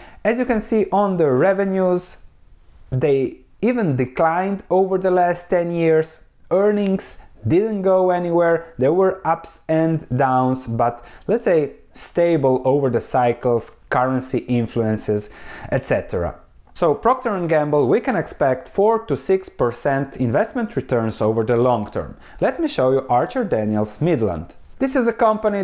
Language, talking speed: English, 145 wpm